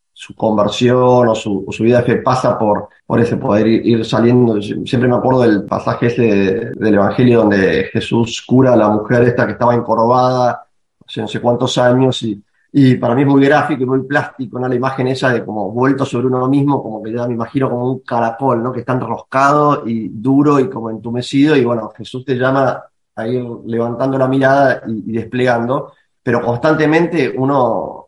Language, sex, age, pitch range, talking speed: Spanish, male, 30-49, 115-135 Hz, 200 wpm